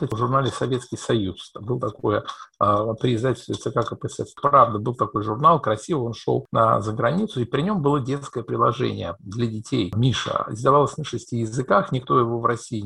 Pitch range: 115-155 Hz